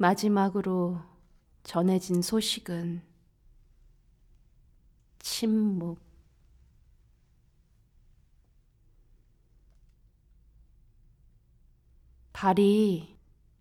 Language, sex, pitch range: English, female, 155-205 Hz